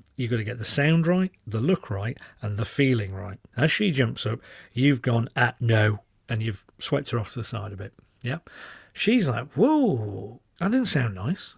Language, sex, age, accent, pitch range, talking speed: English, male, 40-59, British, 115-150 Hz, 205 wpm